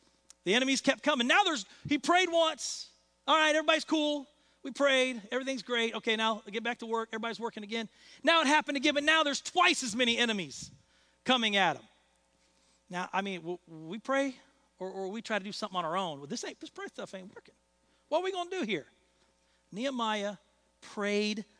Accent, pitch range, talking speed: American, 215-300 Hz, 210 wpm